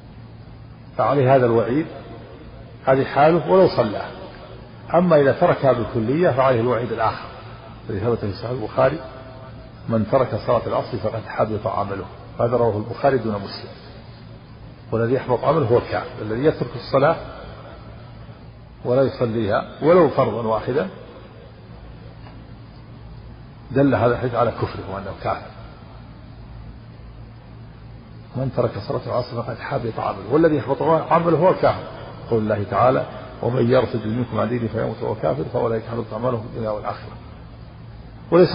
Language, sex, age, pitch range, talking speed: Arabic, male, 50-69, 110-130 Hz, 125 wpm